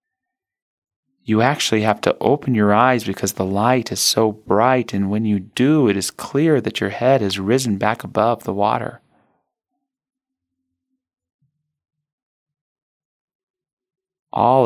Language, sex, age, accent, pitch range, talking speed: English, male, 30-49, American, 100-135 Hz, 125 wpm